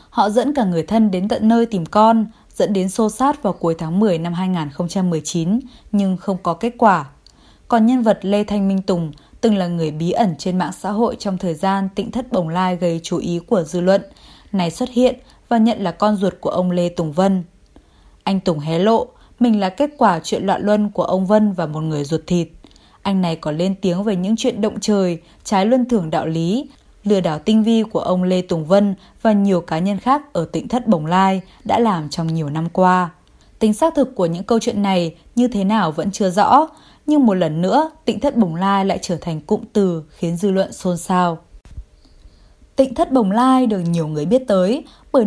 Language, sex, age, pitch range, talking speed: Vietnamese, female, 20-39, 175-225 Hz, 225 wpm